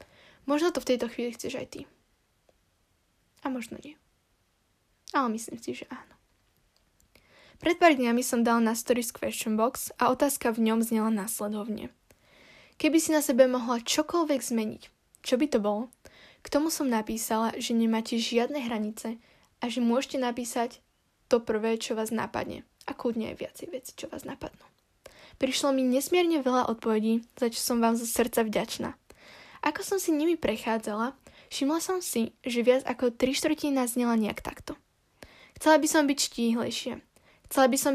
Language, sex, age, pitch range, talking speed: Slovak, female, 10-29, 230-285 Hz, 160 wpm